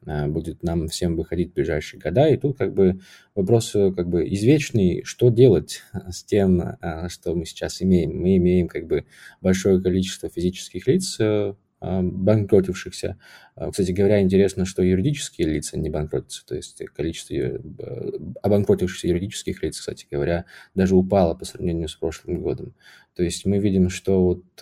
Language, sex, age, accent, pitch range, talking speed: Russian, male, 20-39, native, 90-105 Hz, 145 wpm